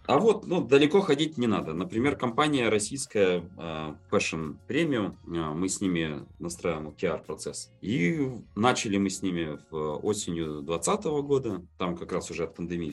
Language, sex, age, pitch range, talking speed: Russian, male, 30-49, 85-120 Hz, 160 wpm